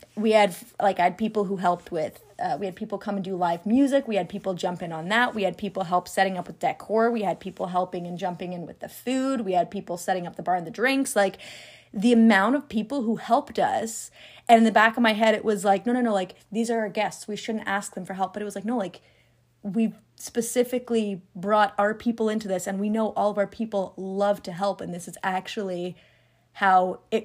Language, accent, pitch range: English, American, 190-225 Hz